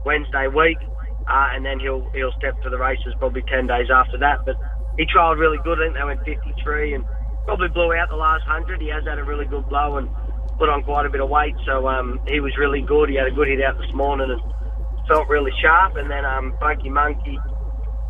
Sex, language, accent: male, English, Australian